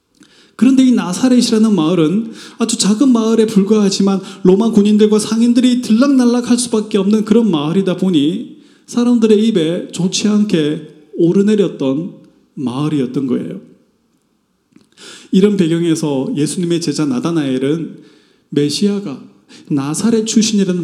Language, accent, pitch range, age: Korean, native, 150-215 Hz, 30-49